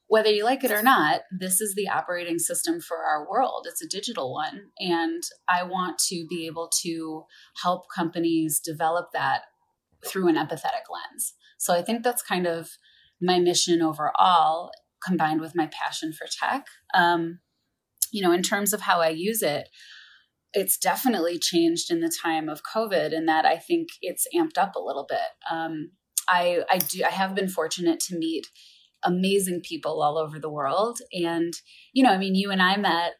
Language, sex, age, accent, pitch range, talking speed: English, female, 20-39, American, 170-220 Hz, 180 wpm